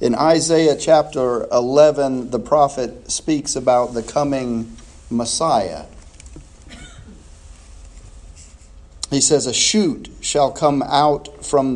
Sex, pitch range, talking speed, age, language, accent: male, 105-145 Hz, 95 wpm, 40-59, English, American